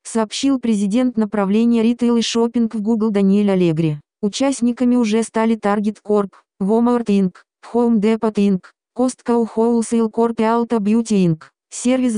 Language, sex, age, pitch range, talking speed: Russian, female, 20-39, 205-230 Hz, 140 wpm